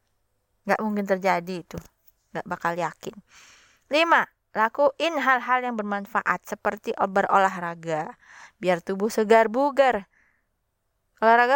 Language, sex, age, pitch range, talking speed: Indonesian, female, 20-39, 190-255 Hz, 95 wpm